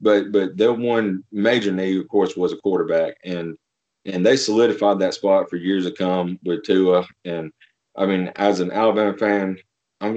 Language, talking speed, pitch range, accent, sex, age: English, 190 wpm, 90-105 Hz, American, male, 30-49